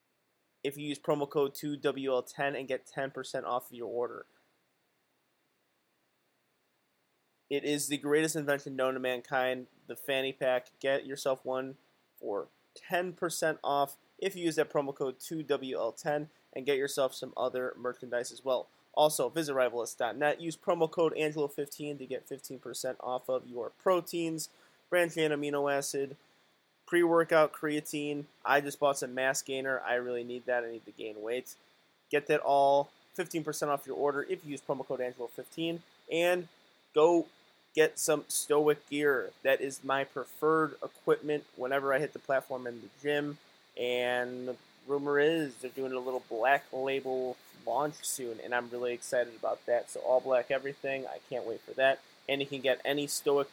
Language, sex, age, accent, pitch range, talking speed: English, male, 20-39, American, 130-150 Hz, 160 wpm